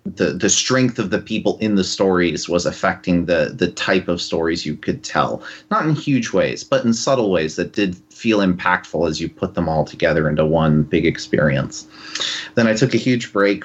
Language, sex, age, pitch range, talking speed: English, male, 30-49, 85-105 Hz, 205 wpm